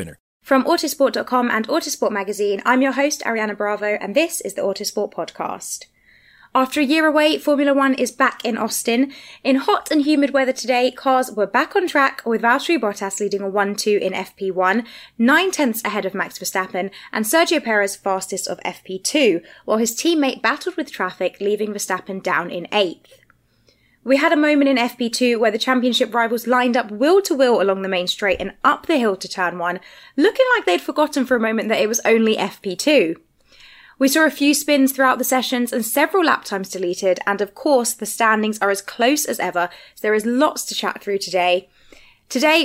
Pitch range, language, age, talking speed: 200-275 Hz, English, 20-39, 190 wpm